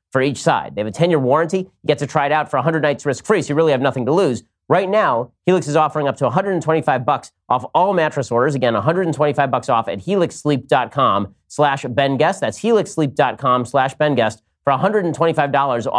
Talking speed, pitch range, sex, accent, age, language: 195 wpm, 110-150 Hz, male, American, 30-49, English